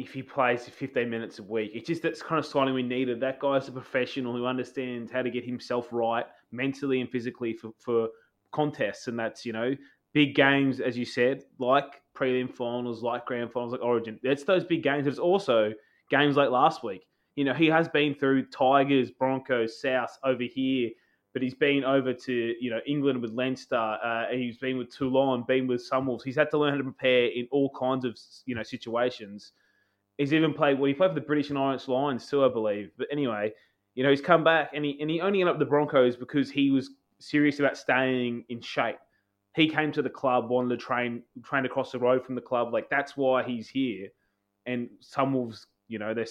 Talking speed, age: 215 wpm, 20-39